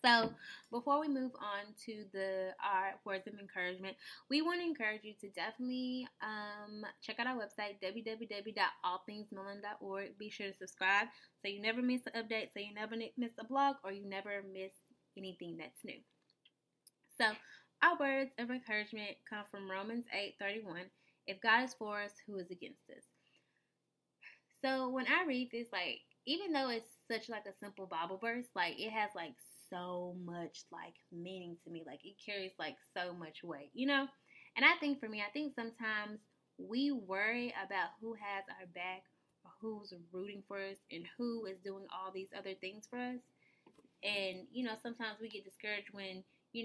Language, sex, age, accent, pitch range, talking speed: English, female, 10-29, American, 190-235 Hz, 180 wpm